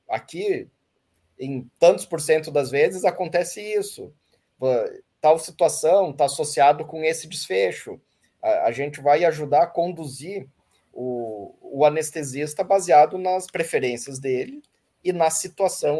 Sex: male